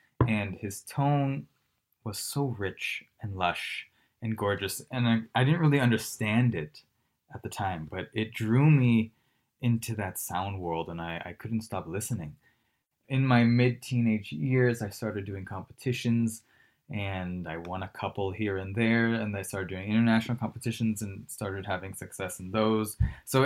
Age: 20-39